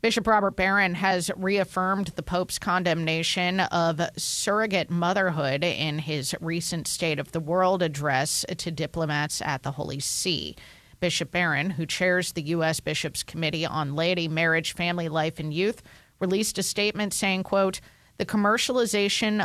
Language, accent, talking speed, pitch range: English, American, 145 wpm, 160-195 Hz